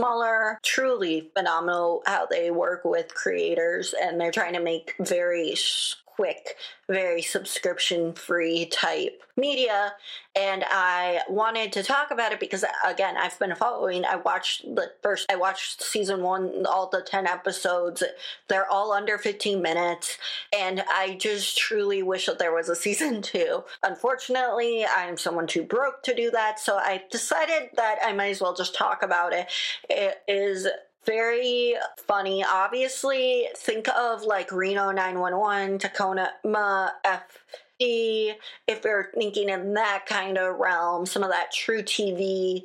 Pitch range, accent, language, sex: 185-235 Hz, American, English, female